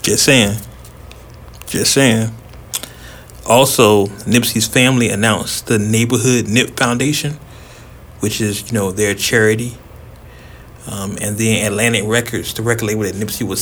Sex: male